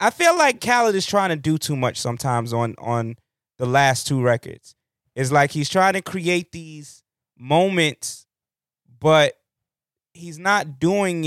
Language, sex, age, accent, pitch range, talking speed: English, male, 20-39, American, 130-160 Hz, 155 wpm